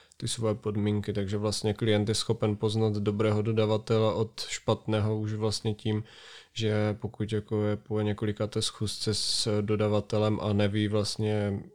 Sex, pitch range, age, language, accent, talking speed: male, 100-110 Hz, 20-39, Czech, native, 145 wpm